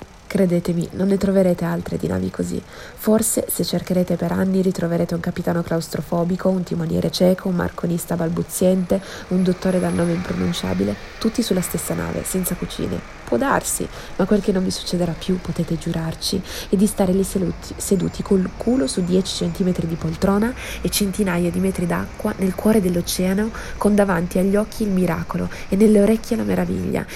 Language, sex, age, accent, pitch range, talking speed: Italian, female, 20-39, native, 170-205 Hz, 170 wpm